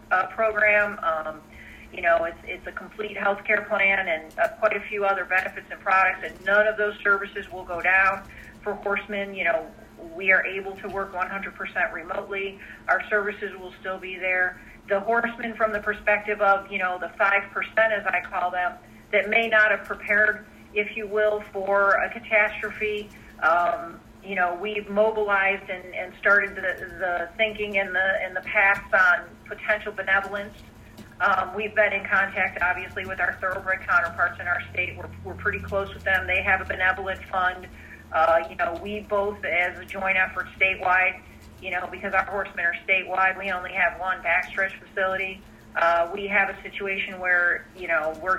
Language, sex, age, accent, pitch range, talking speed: English, female, 40-59, American, 185-205 Hz, 180 wpm